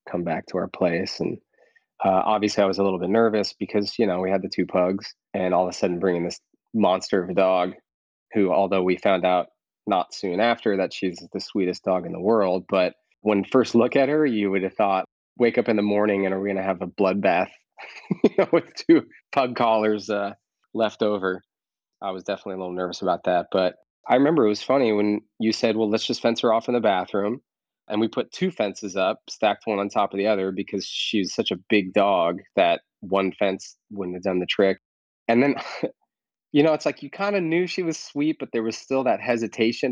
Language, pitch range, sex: English, 95-125 Hz, male